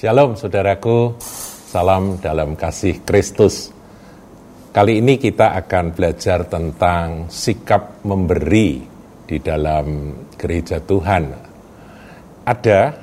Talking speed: 85 wpm